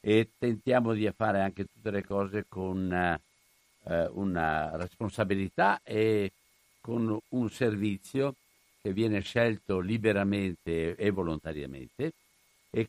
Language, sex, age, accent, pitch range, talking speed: Italian, male, 60-79, native, 90-105 Hz, 105 wpm